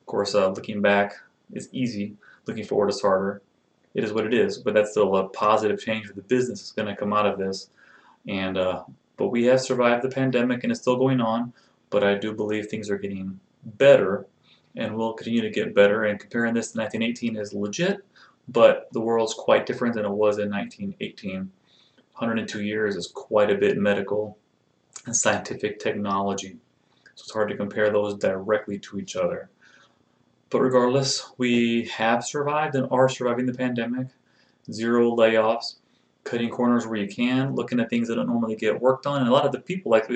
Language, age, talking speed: English, 30-49, 195 wpm